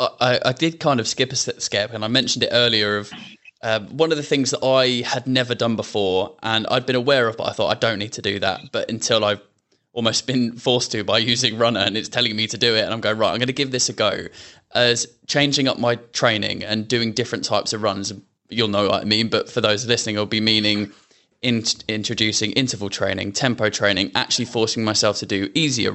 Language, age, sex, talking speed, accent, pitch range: English, 20-39, male, 235 wpm, British, 105-125 Hz